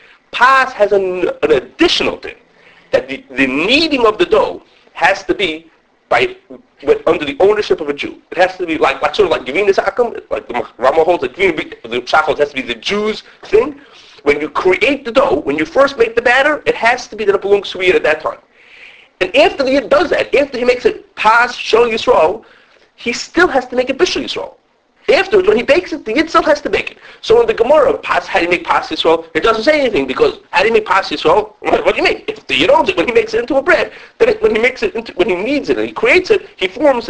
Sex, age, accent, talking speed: male, 40-59, American, 255 wpm